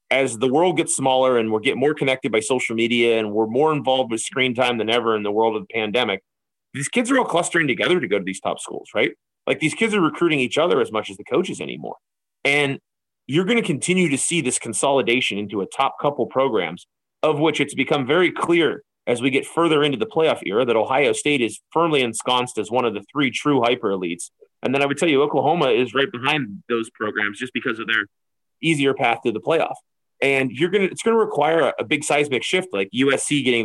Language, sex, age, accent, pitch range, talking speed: English, male, 30-49, American, 110-145 Hz, 235 wpm